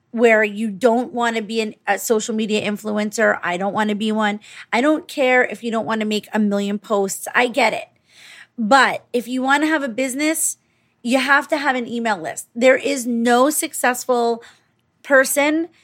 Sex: female